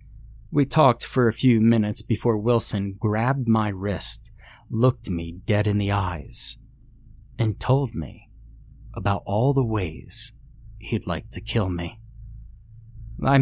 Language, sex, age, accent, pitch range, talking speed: English, male, 30-49, American, 100-120 Hz, 135 wpm